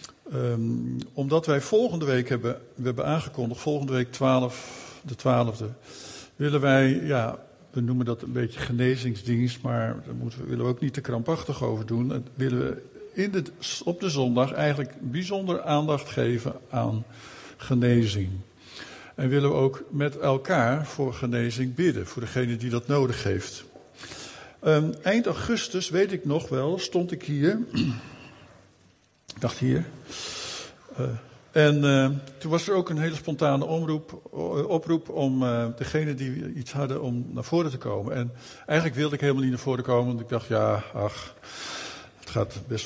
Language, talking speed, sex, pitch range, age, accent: Dutch, 165 wpm, male, 120-145 Hz, 50-69, Dutch